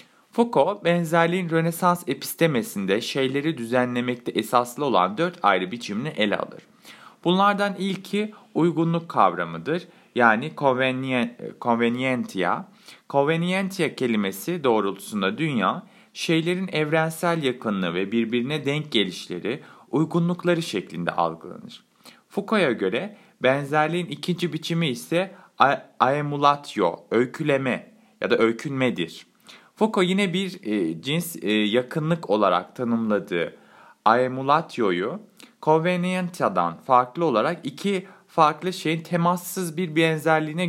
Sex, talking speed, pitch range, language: male, 90 wpm, 130-185 Hz, Turkish